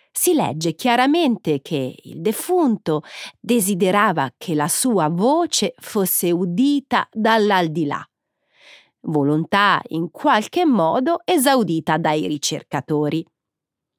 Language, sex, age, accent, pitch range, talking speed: Italian, female, 30-49, native, 165-255 Hz, 90 wpm